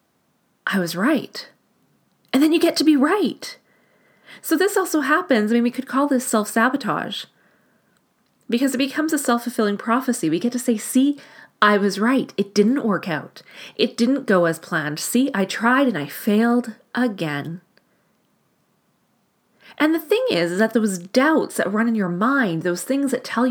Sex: female